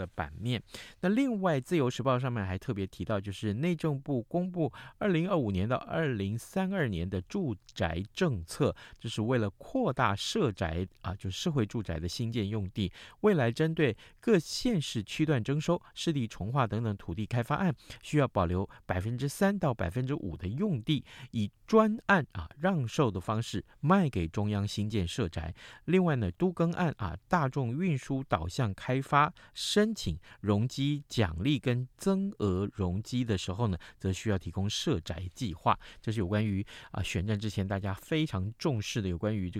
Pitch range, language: 100-145 Hz, Chinese